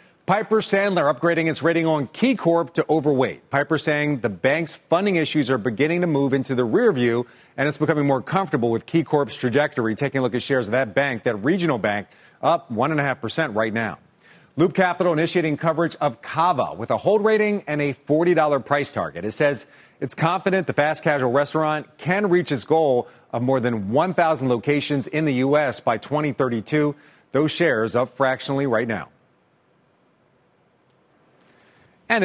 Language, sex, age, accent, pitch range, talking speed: English, male, 40-59, American, 130-165 Hz, 165 wpm